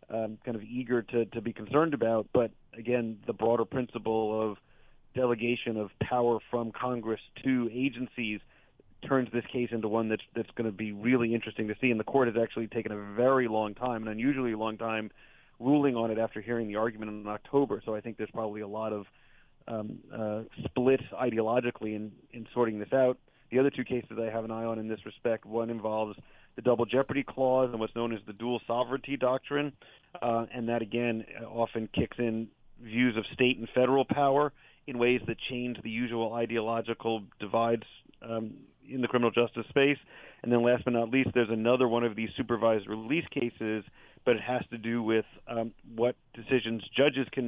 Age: 30-49